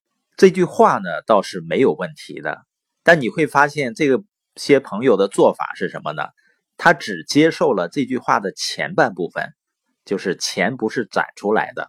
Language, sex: Chinese, male